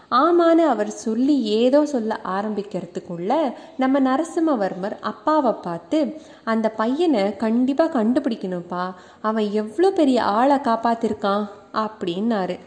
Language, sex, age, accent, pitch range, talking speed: English, female, 20-39, Indian, 205-290 Hz, 125 wpm